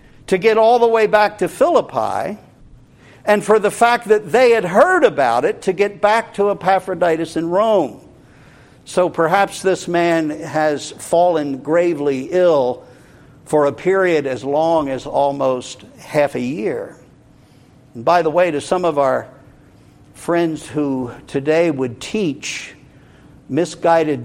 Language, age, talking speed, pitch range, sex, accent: English, 60-79, 140 wpm, 130-175 Hz, male, American